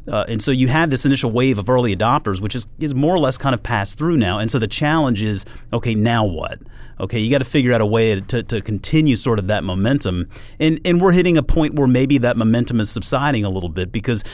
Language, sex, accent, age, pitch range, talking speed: English, male, American, 40-59, 100-130 Hz, 260 wpm